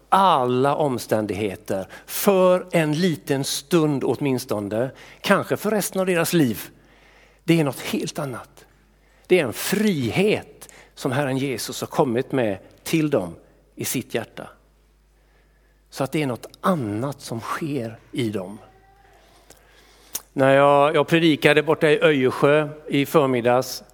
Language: Swedish